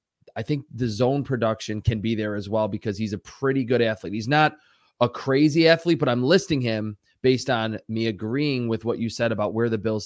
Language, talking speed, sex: English, 220 wpm, male